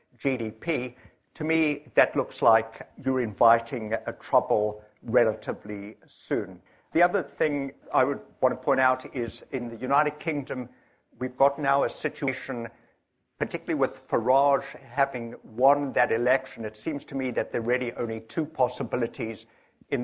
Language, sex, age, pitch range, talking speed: English, male, 60-79, 115-140 Hz, 150 wpm